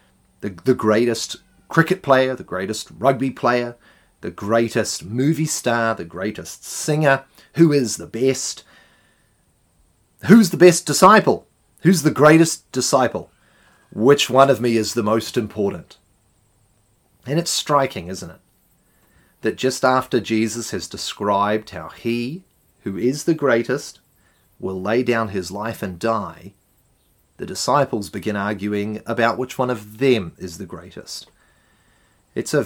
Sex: male